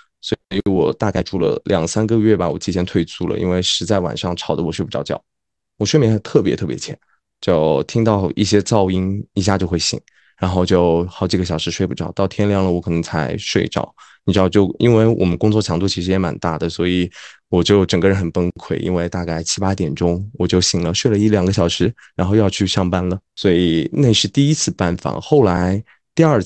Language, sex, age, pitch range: Chinese, male, 20-39, 90-110 Hz